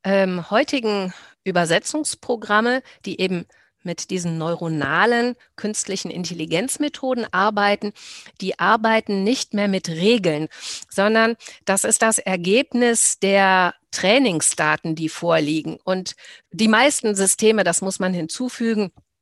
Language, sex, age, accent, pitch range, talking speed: German, female, 50-69, German, 170-220 Hz, 105 wpm